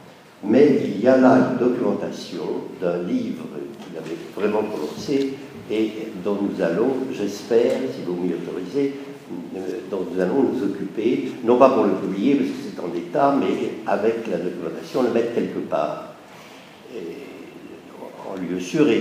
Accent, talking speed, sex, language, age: French, 155 wpm, male, French, 60-79